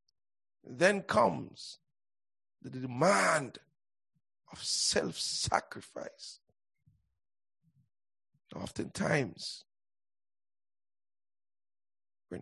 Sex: male